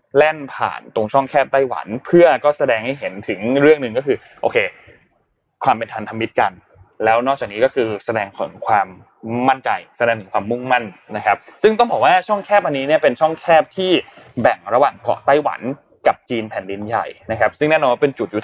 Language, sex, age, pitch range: Thai, male, 20-39, 115-155 Hz